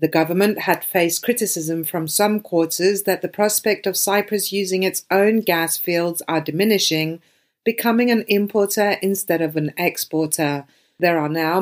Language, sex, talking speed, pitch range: English, female, 155 wpm, 175-210 Hz